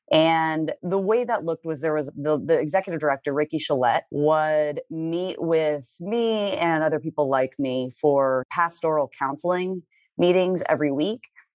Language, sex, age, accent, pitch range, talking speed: English, female, 30-49, American, 140-170 Hz, 150 wpm